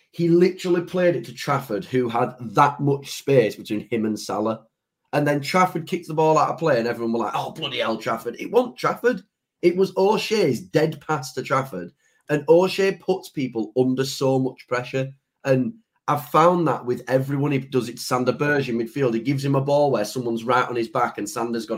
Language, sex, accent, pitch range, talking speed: English, male, British, 120-150 Hz, 215 wpm